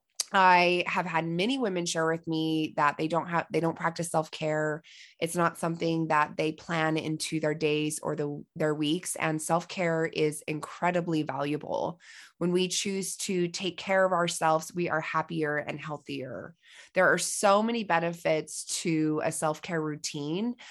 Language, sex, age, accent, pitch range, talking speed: English, female, 20-39, American, 160-195 Hz, 160 wpm